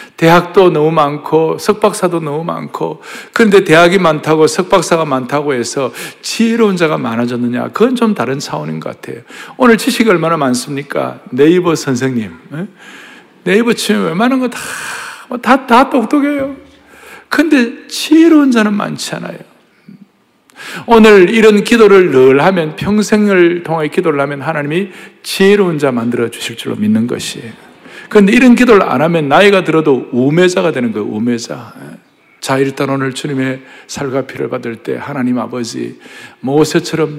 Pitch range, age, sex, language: 145-225 Hz, 60-79, male, Korean